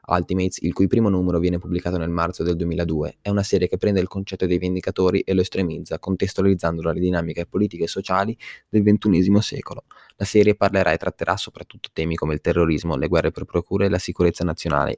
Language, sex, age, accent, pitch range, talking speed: Italian, male, 20-39, native, 85-100 Hz, 200 wpm